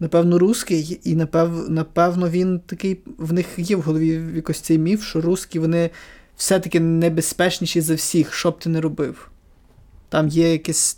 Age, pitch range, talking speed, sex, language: 20-39, 160-175 Hz, 165 wpm, male, Ukrainian